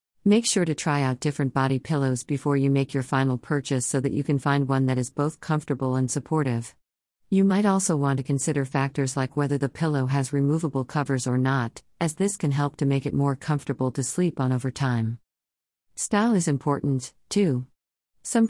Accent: American